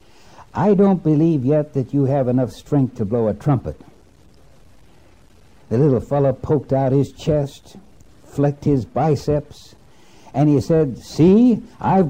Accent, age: American, 60-79